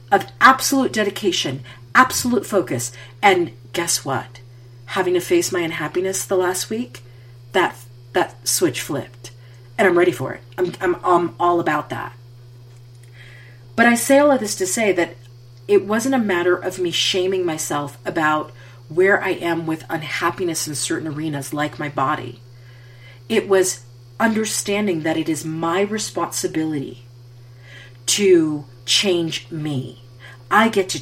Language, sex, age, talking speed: English, female, 40-59, 145 wpm